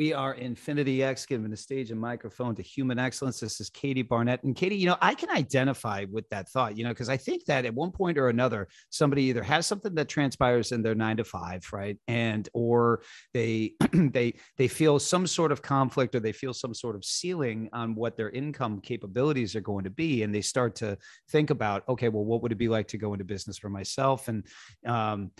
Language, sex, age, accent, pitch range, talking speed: English, male, 40-59, American, 110-135 Hz, 225 wpm